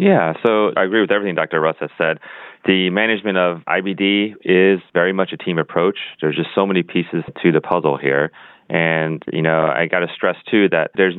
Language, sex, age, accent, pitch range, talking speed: English, male, 30-49, American, 80-95 Hz, 210 wpm